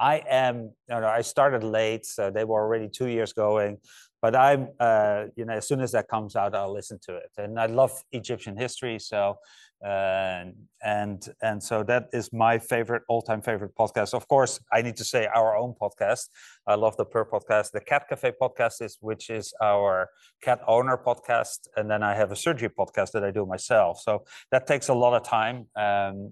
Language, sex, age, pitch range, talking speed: English, male, 30-49, 105-125 Hz, 205 wpm